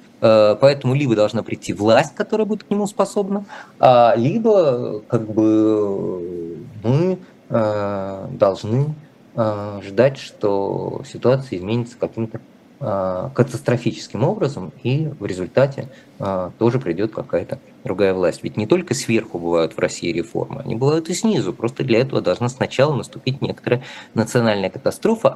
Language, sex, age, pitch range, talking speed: Russian, male, 20-39, 95-130 Hz, 120 wpm